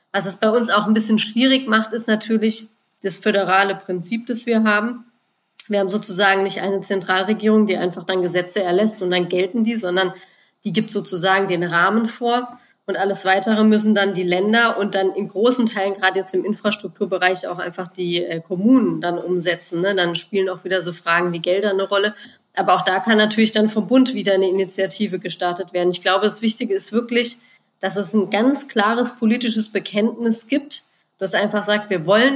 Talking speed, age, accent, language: 190 wpm, 30-49, German, German